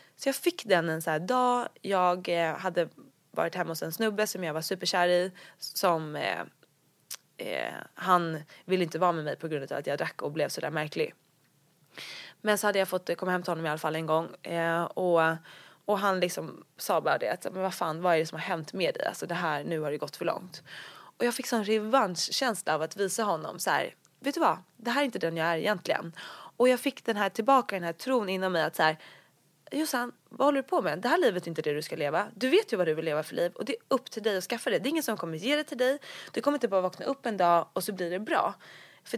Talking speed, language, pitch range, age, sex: 270 wpm, English, 170-240 Hz, 20-39, female